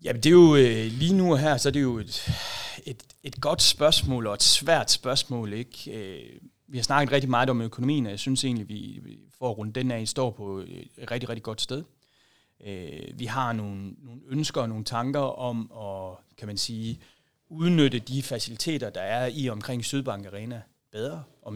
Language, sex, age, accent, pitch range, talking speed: Danish, male, 30-49, native, 105-135 Hz, 195 wpm